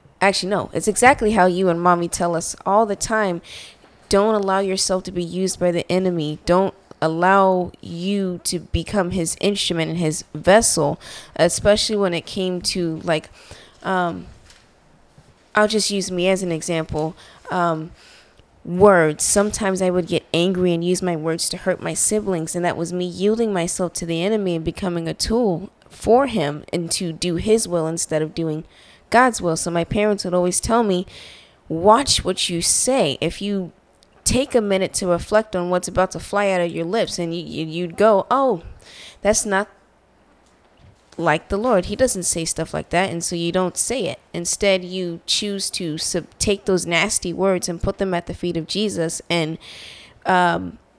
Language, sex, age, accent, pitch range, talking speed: English, female, 20-39, American, 170-195 Hz, 180 wpm